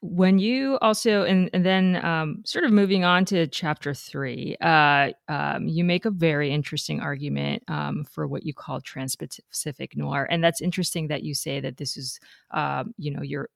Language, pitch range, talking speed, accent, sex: English, 145-175 Hz, 185 wpm, American, female